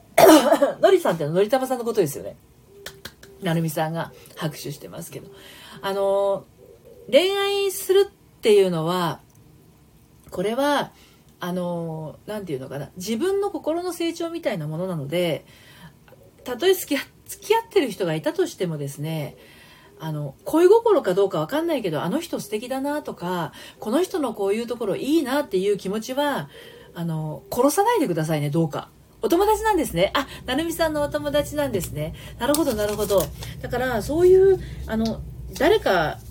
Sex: female